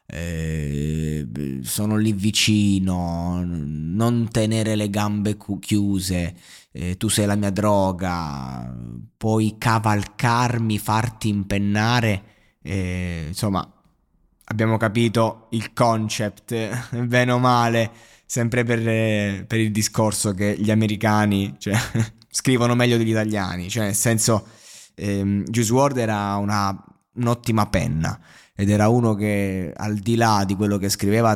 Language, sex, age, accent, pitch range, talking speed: Italian, male, 20-39, native, 100-115 Hz, 125 wpm